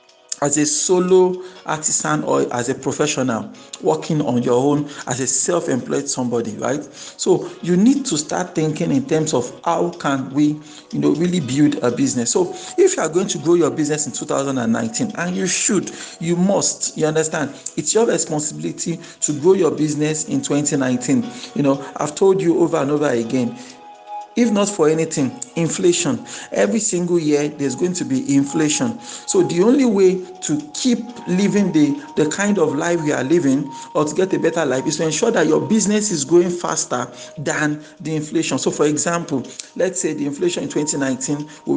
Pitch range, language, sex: 145-190 Hz, English, male